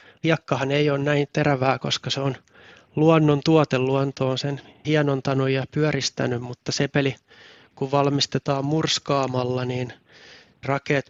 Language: Finnish